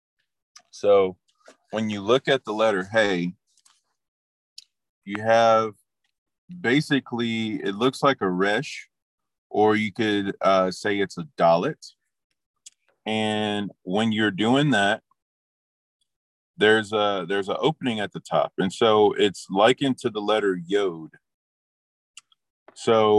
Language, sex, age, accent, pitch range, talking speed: English, male, 30-49, American, 95-115 Hz, 120 wpm